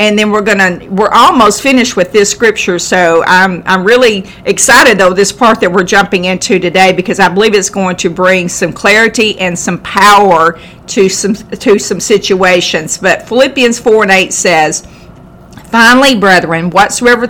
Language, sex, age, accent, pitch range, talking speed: English, female, 50-69, American, 185-240 Hz, 170 wpm